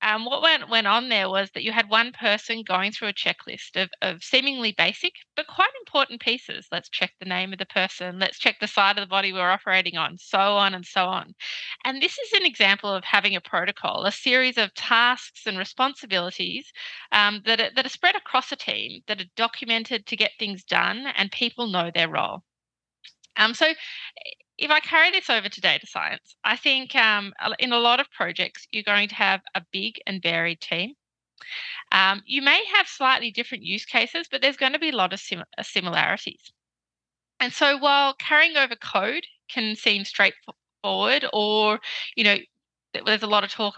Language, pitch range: English, 190-260 Hz